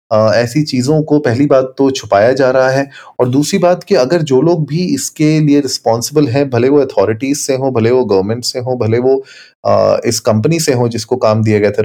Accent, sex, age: native, male, 30-49